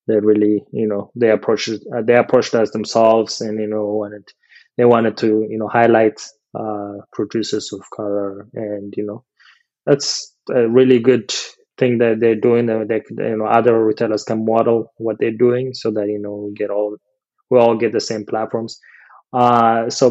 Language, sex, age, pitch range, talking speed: English, male, 20-39, 105-120 Hz, 185 wpm